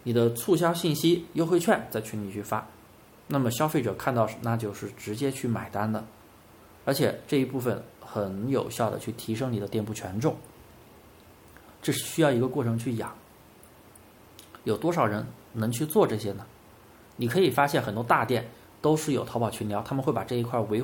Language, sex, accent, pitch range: Chinese, male, native, 110-135 Hz